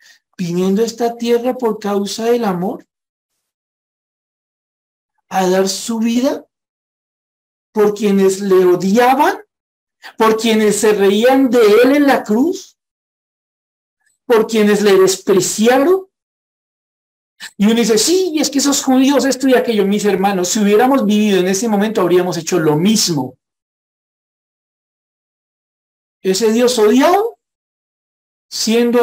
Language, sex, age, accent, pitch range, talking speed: Spanish, male, 50-69, Colombian, 175-235 Hz, 115 wpm